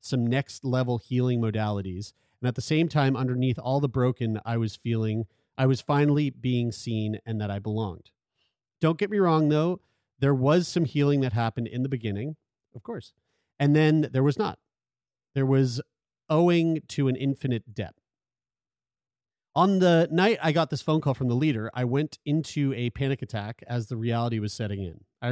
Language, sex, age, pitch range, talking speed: English, male, 40-59, 115-150 Hz, 180 wpm